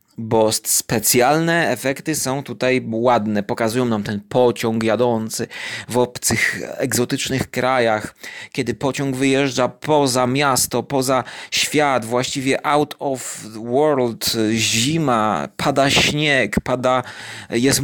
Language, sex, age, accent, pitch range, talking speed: Polish, male, 30-49, native, 115-150 Hz, 105 wpm